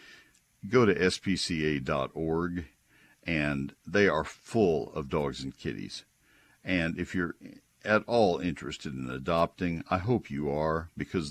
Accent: American